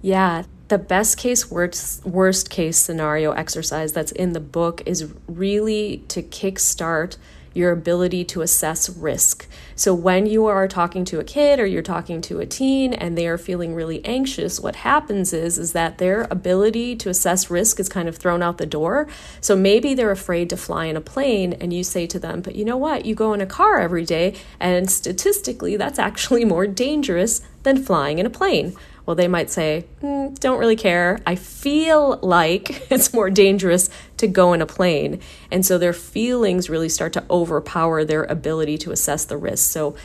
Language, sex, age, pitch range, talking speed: English, female, 30-49, 165-200 Hz, 195 wpm